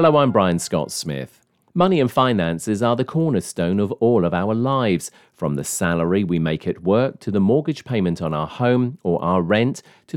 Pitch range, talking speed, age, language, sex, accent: 90-135 Hz, 200 wpm, 40-59, English, male, British